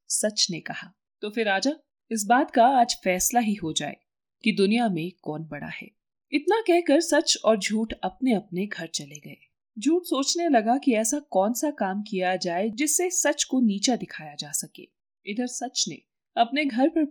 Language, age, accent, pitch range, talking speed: Hindi, 30-49, native, 185-255 Hz, 185 wpm